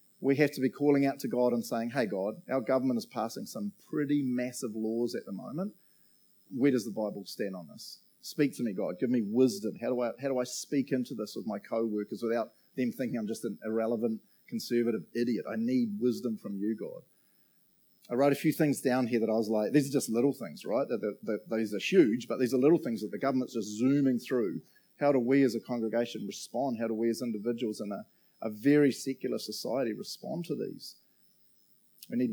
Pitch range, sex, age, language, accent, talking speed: 115-145 Hz, male, 30-49, English, Australian, 220 wpm